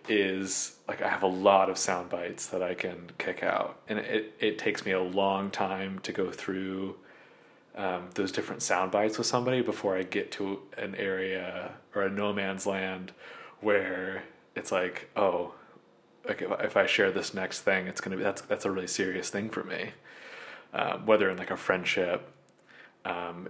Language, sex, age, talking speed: English, male, 30-49, 185 wpm